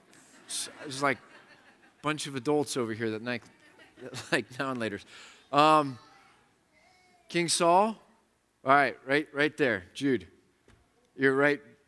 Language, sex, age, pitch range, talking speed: English, male, 30-49, 145-195 Hz, 135 wpm